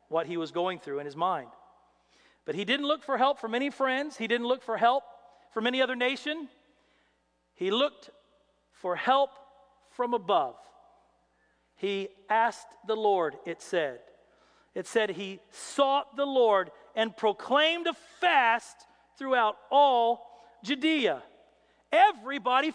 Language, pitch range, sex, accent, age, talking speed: English, 220-295 Hz, male, American, 40-59, 135 wpm